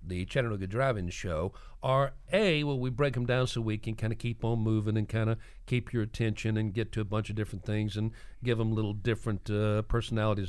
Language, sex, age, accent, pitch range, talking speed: English, male, 50-69, American, 95-125 Hz, 230 wpm